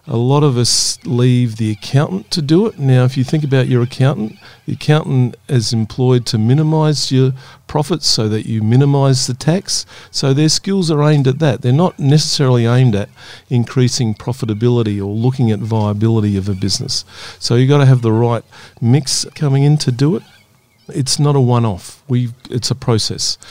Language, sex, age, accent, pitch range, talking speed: English, male, 50-69, Australian, 115-140 Hz, 185 wpm